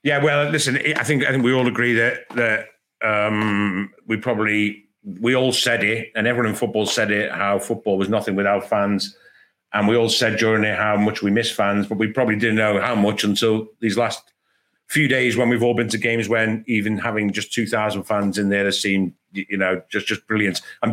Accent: British